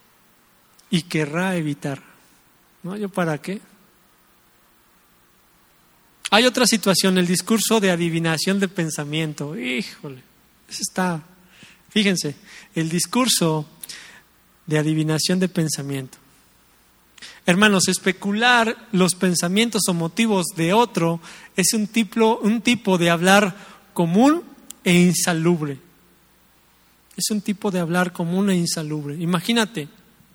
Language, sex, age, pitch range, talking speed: English, male, 40-59, 175-220 Hz, 105 wpm